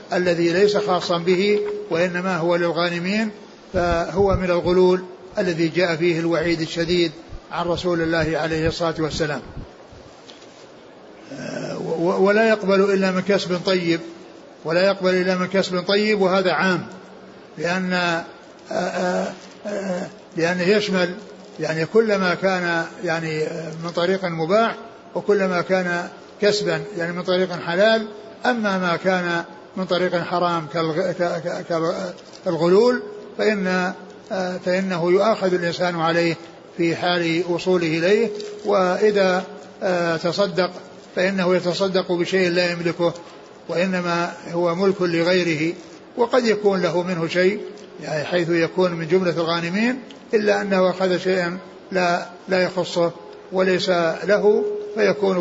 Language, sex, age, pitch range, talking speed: Arabic, male, 60-79, 170-190 Hz, 115 wpm